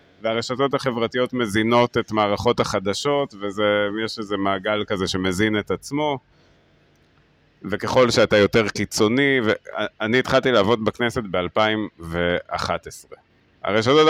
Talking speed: 100 wpm